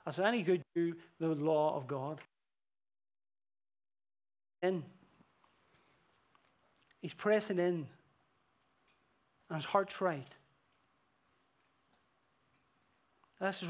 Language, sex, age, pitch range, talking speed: English, male, 40-59, 150-190 Hz, 75 wpm